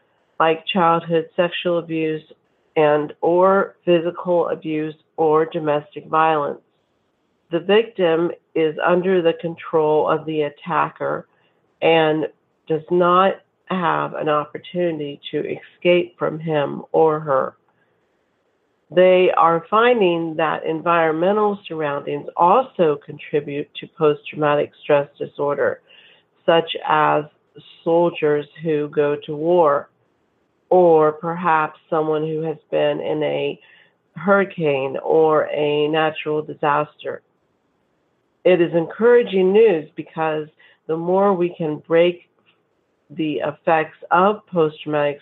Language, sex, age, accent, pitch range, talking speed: English, female, 50-69, American, 150-175 Hz, 105 wpm